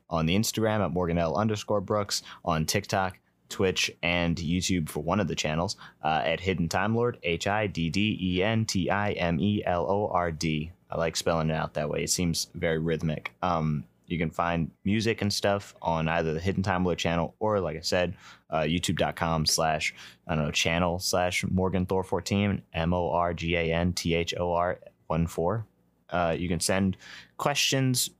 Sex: male